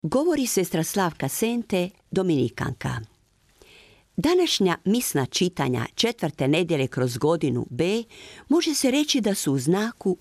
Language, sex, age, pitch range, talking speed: Croatian, female, 50-69, 150-205 Hz, 120 wpm